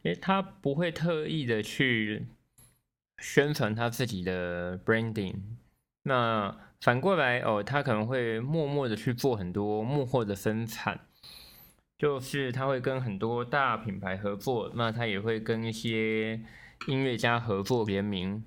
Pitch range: 100-130 Hz